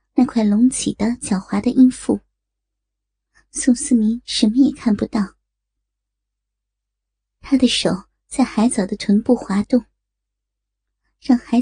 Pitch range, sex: 215-255 Hz, male